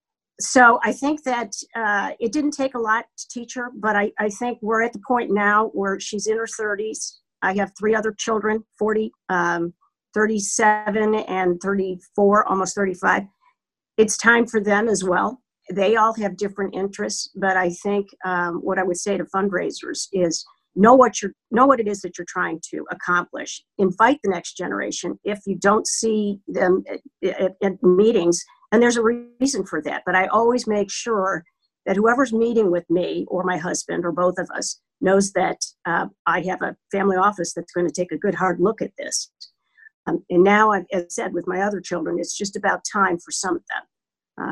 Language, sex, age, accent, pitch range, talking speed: English, female, 50-69, American, 185-220 Hz, 200 wpm